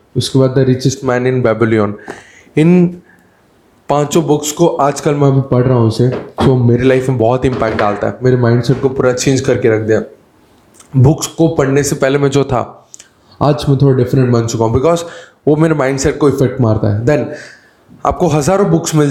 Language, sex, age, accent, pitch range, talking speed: Hindi, male, 10-29, native, 125-150 Hz, 195 wpm